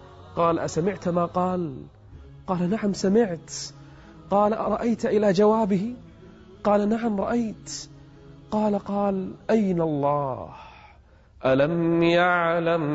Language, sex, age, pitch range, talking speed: Arabic, male, 30-49, 110-175 Hz, 95 wpm